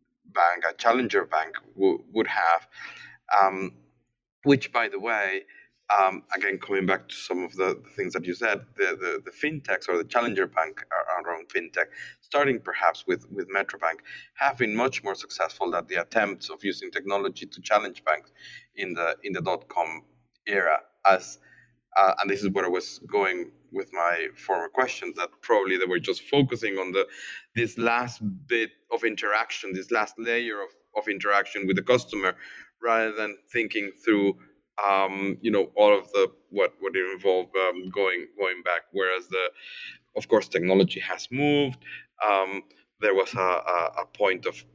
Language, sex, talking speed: English, male, 170 wpm